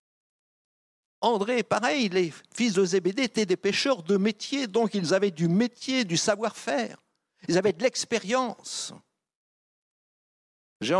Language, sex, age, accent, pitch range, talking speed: French, male, 60-79, French, 160-215 Hz, 125 wpm